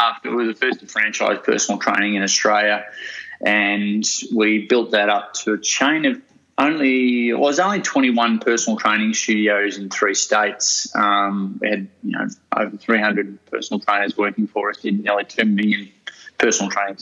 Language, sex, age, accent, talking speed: English, male, 20-39, Australian, 175 wpm